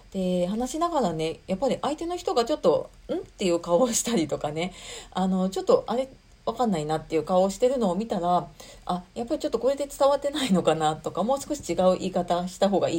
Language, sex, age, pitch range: Japanese, female, 40-59, 170-265 Hz